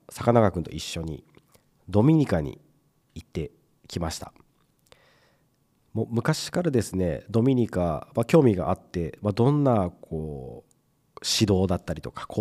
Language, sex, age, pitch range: Japanese, male, 40-59, 90-135 Hz